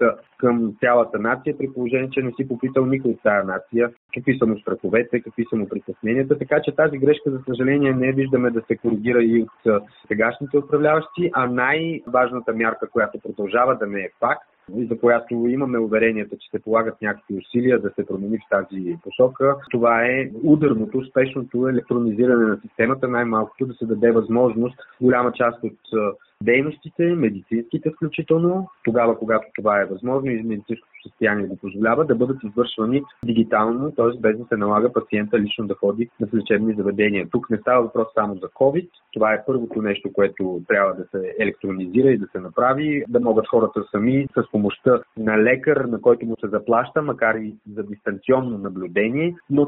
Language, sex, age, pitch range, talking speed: Bulgarian, male, 30-49, 110-135 Hz, 175 wpm